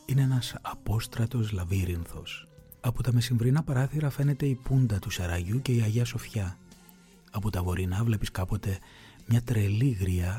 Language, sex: Greek, male